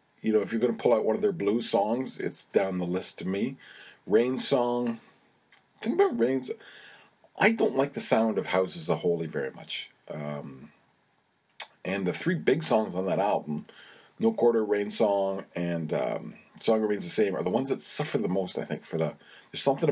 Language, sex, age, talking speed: English, male, 40-59, 200 wpm